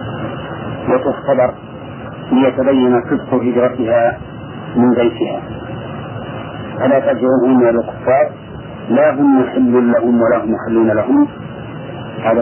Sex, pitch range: male, 115-125 Hz